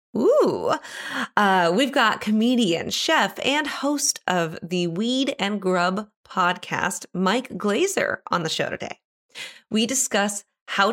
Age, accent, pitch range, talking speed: 30-49, American, 170-240 Hz, 125 wpm